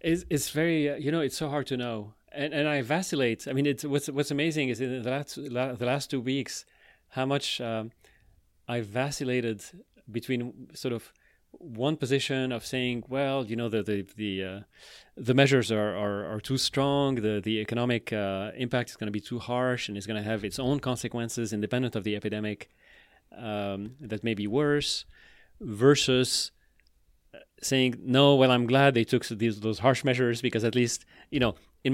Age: 30-49